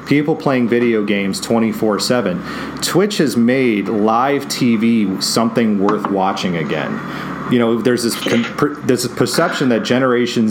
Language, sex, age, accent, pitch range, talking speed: English, male, 40-59, American, 110-135 Hz, 130 wpm